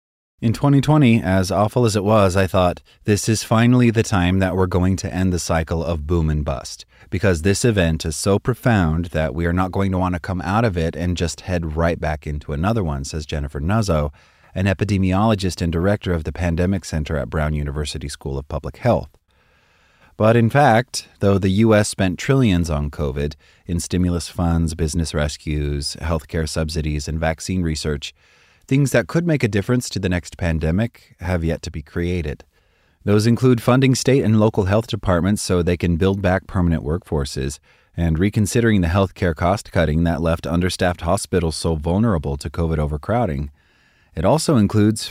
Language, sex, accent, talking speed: English, male, American, 180 wpm